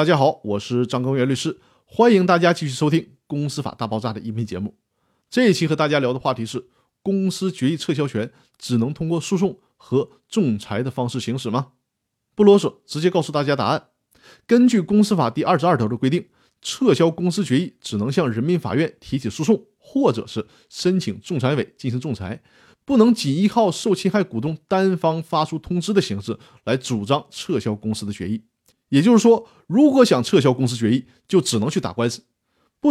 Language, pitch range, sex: Chinese, 125-190 Hz, male